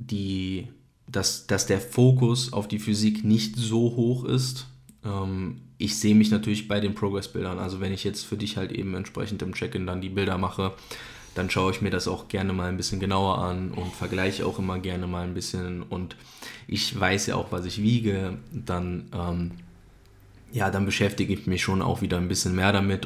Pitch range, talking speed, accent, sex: 95-110 Hz, 200 wpm, German, male